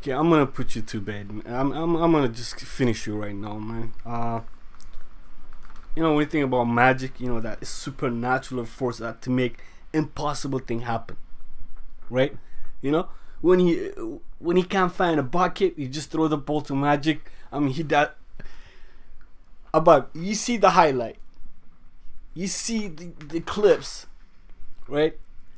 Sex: male